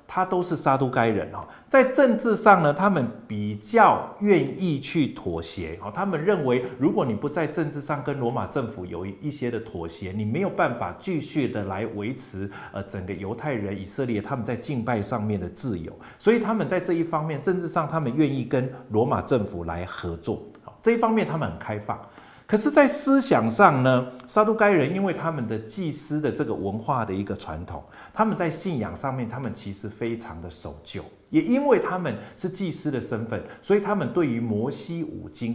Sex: male